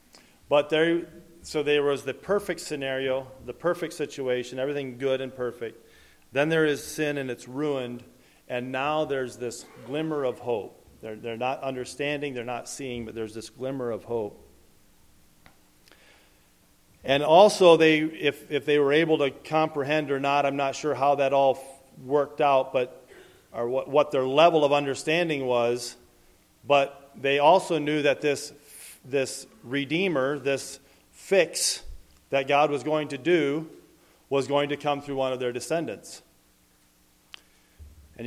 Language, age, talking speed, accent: English, 40-59, 150 wpm, American